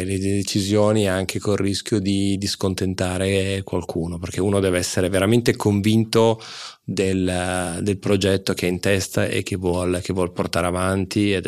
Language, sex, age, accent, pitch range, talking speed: Italian, male, 30-49, native, 90-100 Hz, 155 wpm